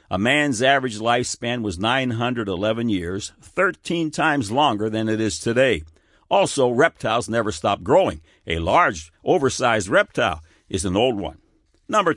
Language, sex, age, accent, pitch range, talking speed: English, male, 60-79, American, 100-135 Hz, 140 wpm